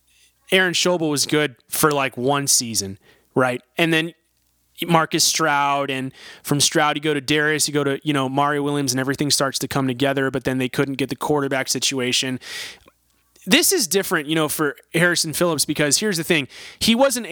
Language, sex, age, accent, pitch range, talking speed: English, male, 30-49, American, 130-160 Hz, 190 wpm